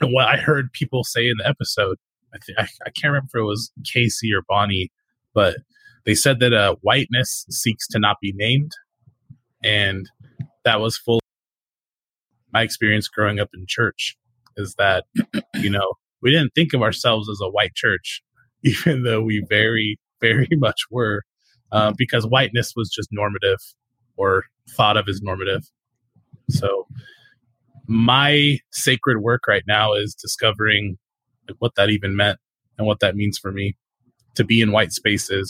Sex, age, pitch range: male, 20-39, 105-130 Hz